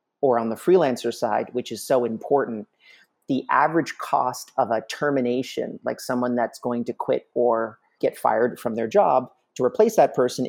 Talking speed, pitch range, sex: 175 wpm, 115-140 Hz, male